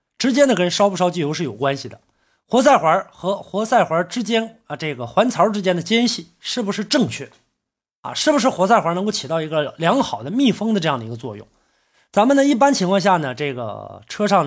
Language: Chinese